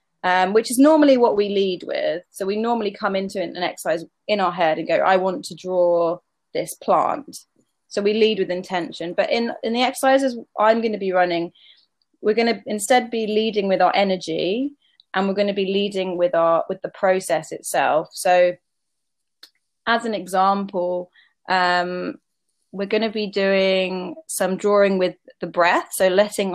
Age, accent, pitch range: 20-39, British, 180-220 Hz